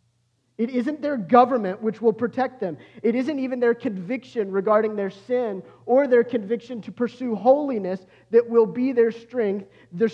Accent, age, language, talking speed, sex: American, 40-59, English, 165 wpm, male